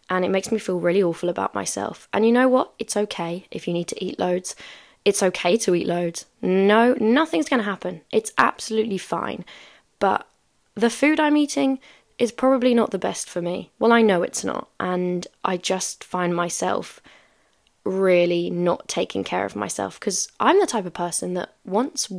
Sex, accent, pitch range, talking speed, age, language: female, British, 180-220 Hz, 185 wpm, 10-29, English